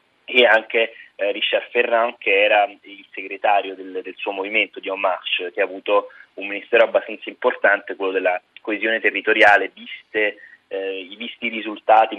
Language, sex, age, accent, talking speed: Italian, male, 30-49, native, 155 wpm